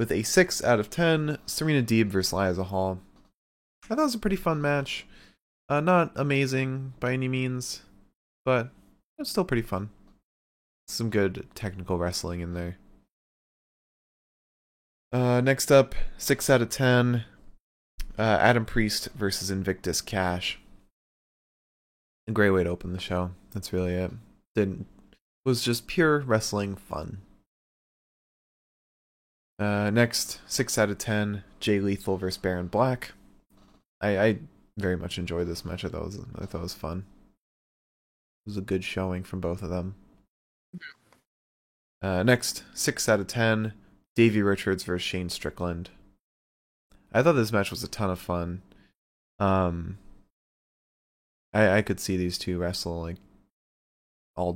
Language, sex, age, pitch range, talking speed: English, male, 20-39, 90-115 Hz, 140 wpm